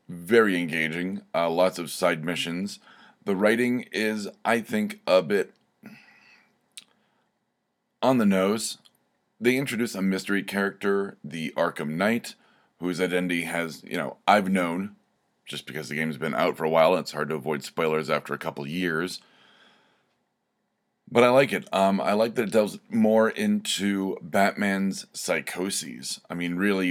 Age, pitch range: 30-49, 85-105 Hz